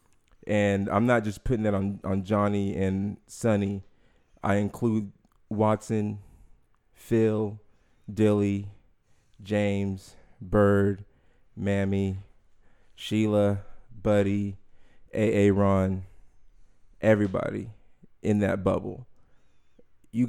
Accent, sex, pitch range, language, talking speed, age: American, male, 100-110 Hz, English, 85 wpm, 20-39